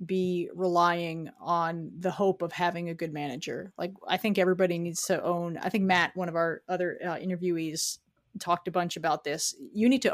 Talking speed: 200 wpm